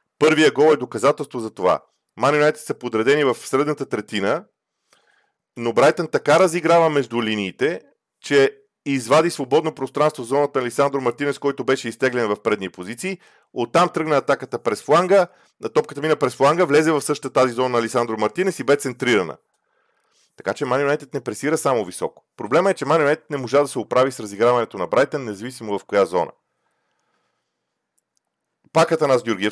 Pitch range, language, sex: 110-155 Hz, Bulgarian, male